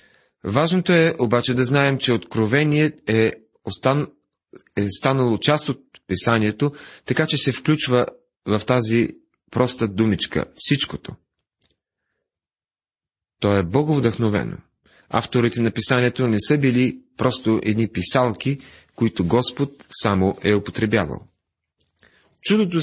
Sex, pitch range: male, 105-140 Hz